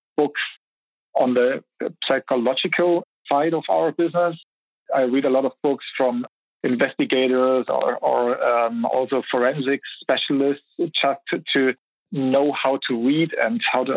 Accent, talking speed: German, 140 wpm